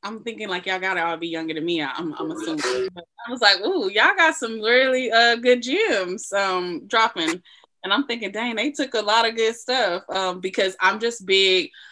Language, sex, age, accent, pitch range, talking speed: English, female, 20-39, American, 170-210 Hz, 215 wpm